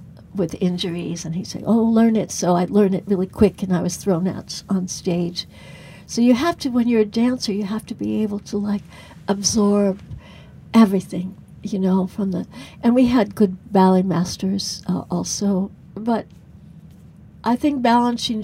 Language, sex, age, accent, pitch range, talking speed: English, female, 60-79, American, 180-215 Hz, 175 wpm